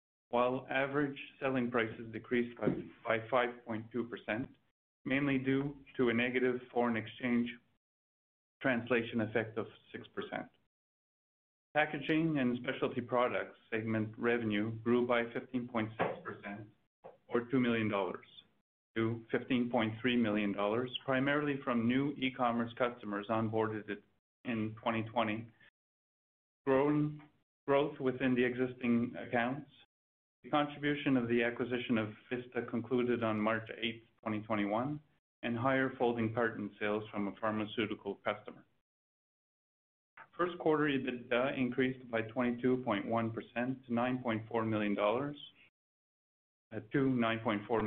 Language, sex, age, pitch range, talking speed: English, male, 30-49, 110-130 Hz, 100 wpm